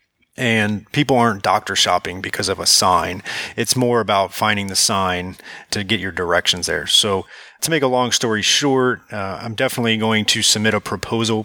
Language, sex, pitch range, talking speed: English, male, 100-115 Hz, 185 wpm